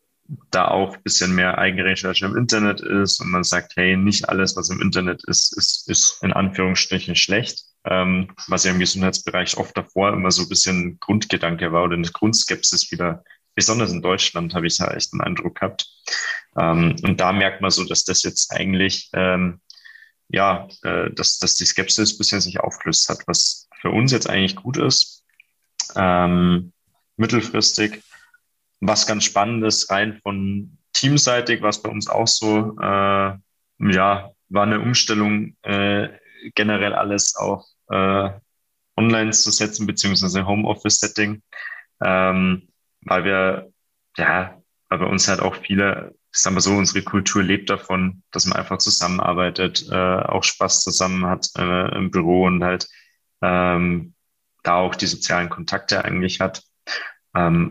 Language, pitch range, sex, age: German, 90-105 Hz, male, 30-49